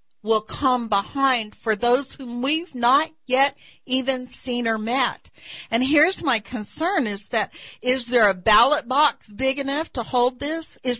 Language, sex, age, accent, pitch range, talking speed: English, female, 50-69, American, 220-280 Hz, 165 wpm